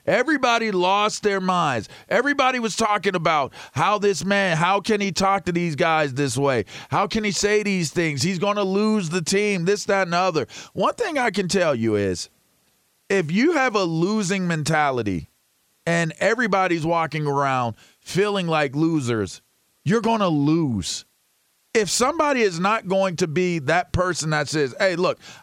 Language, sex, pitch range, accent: English, male, 165-220 Hz, American